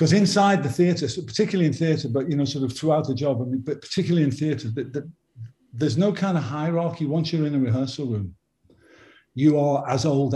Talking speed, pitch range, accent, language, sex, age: 225 wpm, 125-150 Hz, British, English, male, 50-69